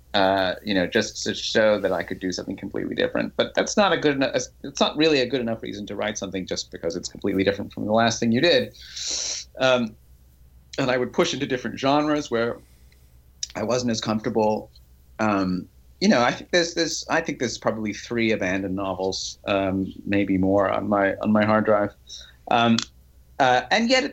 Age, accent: 30-49, American